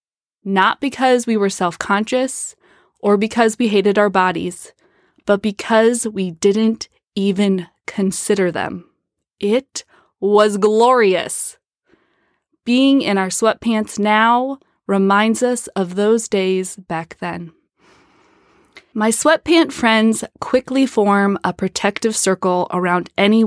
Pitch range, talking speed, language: 185-235 Hz, 110 wpm, English